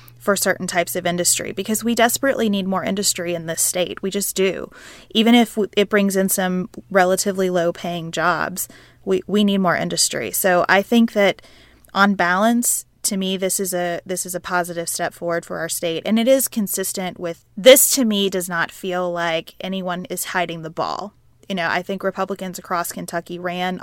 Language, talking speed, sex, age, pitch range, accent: English, 195 wpm, female, 20-39, 175-200 Hz, American